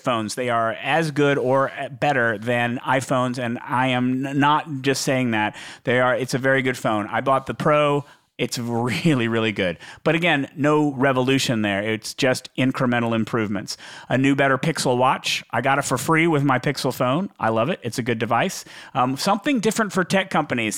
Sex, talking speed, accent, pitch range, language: male, 195 wpm, American, 120-145 Hz, English